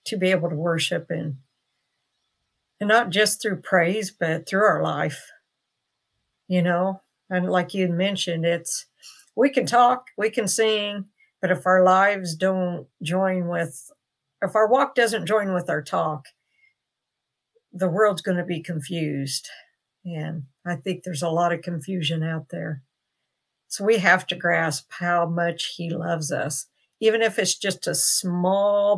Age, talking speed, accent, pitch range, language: 60-79, 155 wpm, American, 170-200 Hz, English